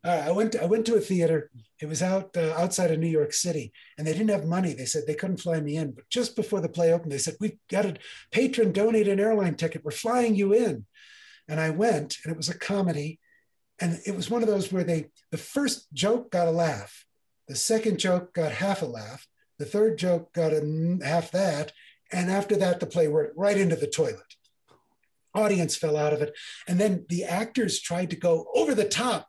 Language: English